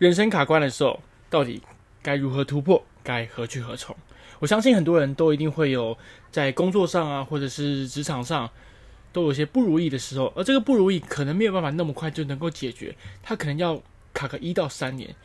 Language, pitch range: Chinese, 135-175 Hz